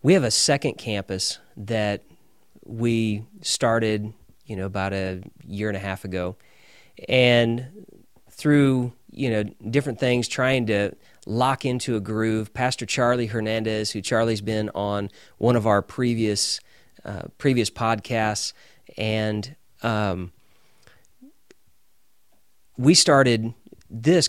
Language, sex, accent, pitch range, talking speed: English, male, American, 105-125 Hz, 120 wpm